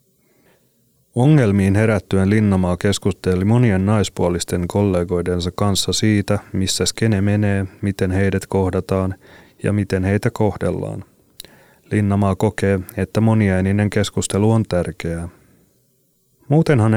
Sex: male